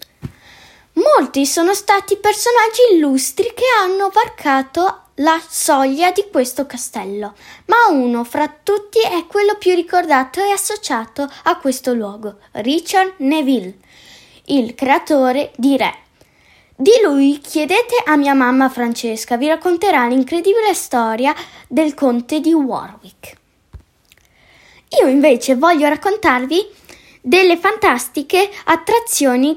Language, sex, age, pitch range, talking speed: Italian, female, 10-29, 250-385 Hz, 110 wpm